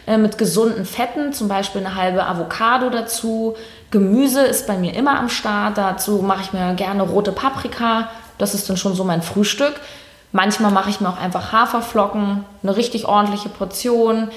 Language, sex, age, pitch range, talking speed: German, female, 20-39, 190-225 Hz, 170 wpm